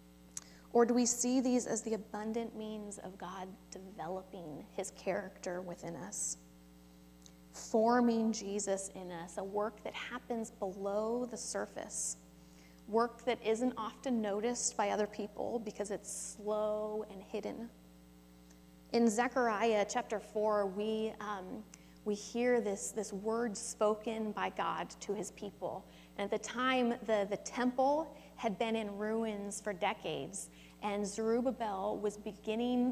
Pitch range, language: 175-230 Hz, English